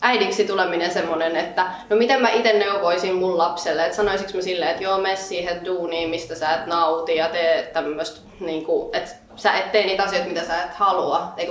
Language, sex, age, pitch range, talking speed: Finnish, female, 20-39, 165-215 Hz, 205 wpm